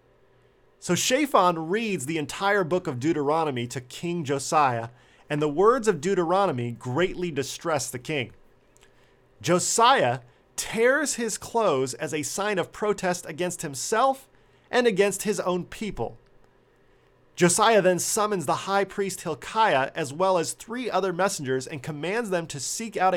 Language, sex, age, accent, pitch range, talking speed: English, male, 40-59, American, 140-205 Hz, 140 wpm